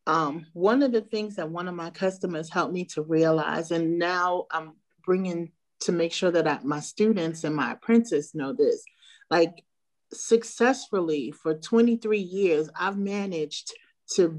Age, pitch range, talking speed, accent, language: 40-59, 170-230 Hz, 155 wpm, American, English